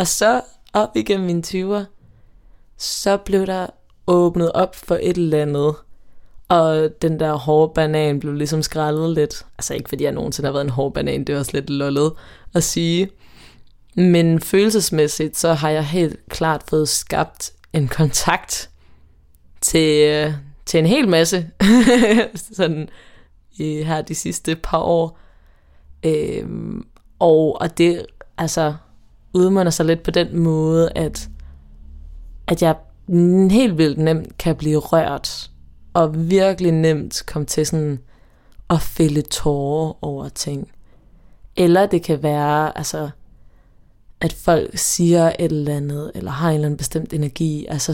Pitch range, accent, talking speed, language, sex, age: 145-170 Hz, native, 145 wpm, Danish, female, 20-39